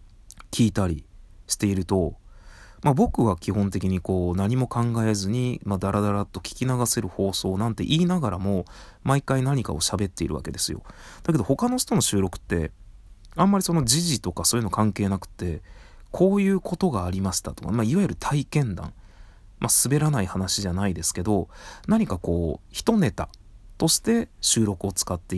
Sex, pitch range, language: male, 95-140 Hz, Japanese